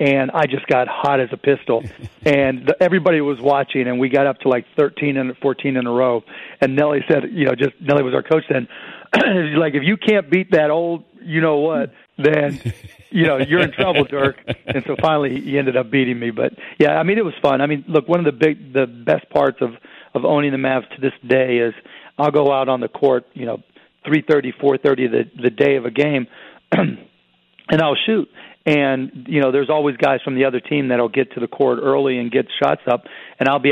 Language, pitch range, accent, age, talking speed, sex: English, 130-150 Hz, American, 40-59, 240 wpm, male